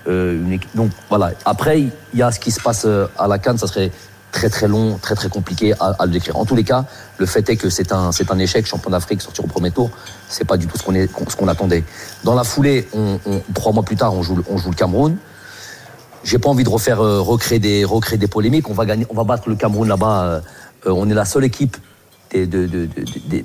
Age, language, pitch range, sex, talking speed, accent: 40-59, French, 95-115 Hz, male, 255 wpm, French